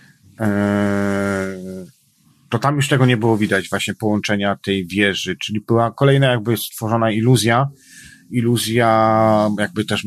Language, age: Polish, 40-59